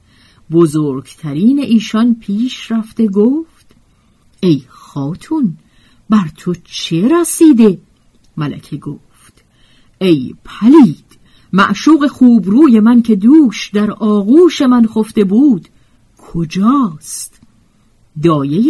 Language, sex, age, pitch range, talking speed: Persian, female, 50-69, 155-245 Hz, 90 wpm